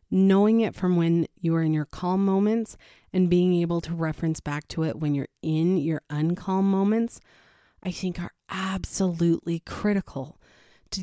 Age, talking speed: 30-49, 165 wpm